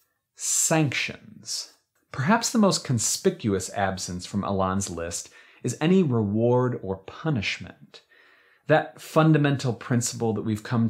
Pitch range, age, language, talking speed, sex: 100-125 Hz, 30-49, English, 110 wpm, male